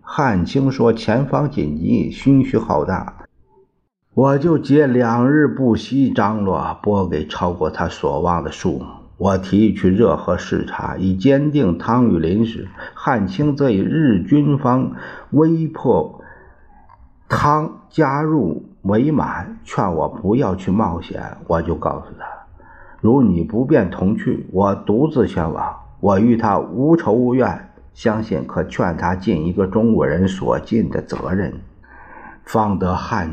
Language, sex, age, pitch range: Chinese, male, 50-69, 85-125 Hz